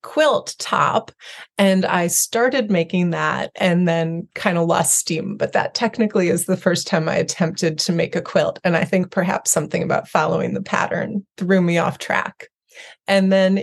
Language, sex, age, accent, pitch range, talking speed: English, female, 30-49, American, 170-210 Hz, 180 wpm